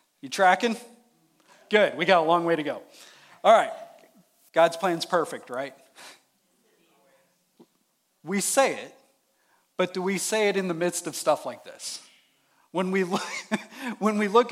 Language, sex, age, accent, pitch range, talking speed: English, male, 40-59, American, 165-220 Hz, 145 wpm